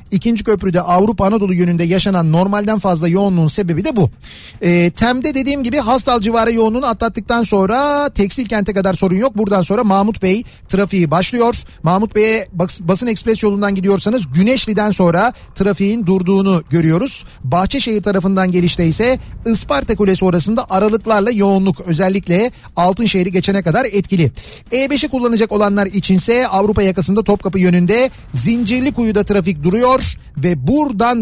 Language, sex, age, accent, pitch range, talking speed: Turkish, male, 40-59, native, 180-225 Hz, 140 wpm